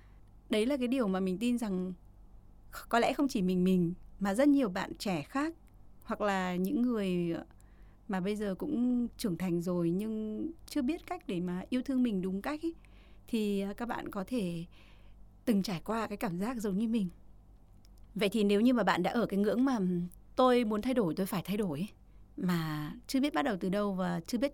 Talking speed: 210 wpm